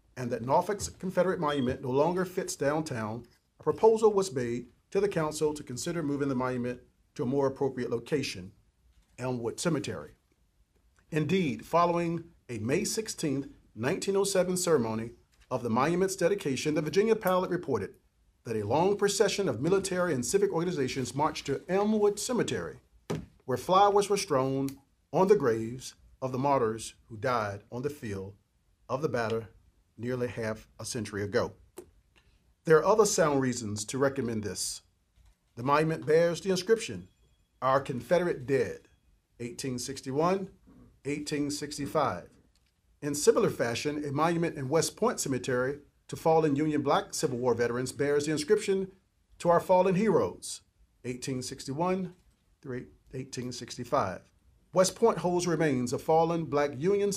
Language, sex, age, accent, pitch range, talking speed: English, male, 40-59, American, 120-180 Hz, 135 wpm